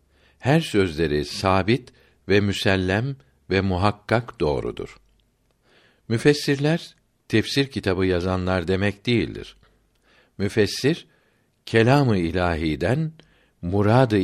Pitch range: 90-125 Hz